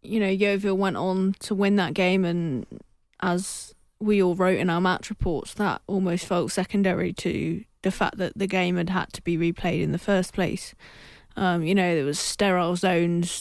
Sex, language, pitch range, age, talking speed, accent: female, English, 180-200 Hz, 20-39, 195 wpm, British